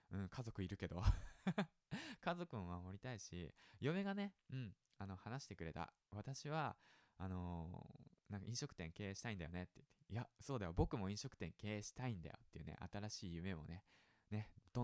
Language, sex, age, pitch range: Japanese, male, 20-39, 90-125 Hz